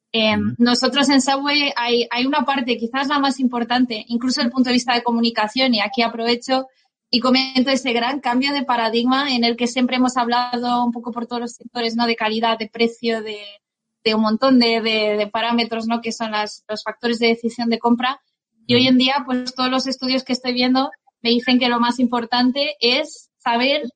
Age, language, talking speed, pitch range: 20-39, Spanish, 210 wpm, 225-255 Hz